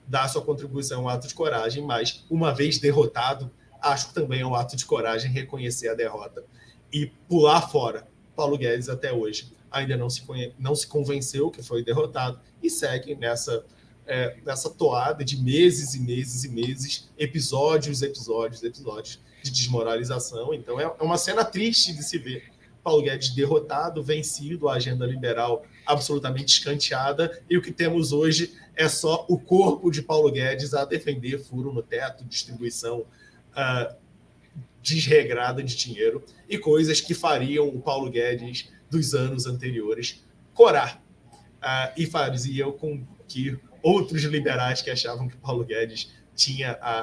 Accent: Brazilian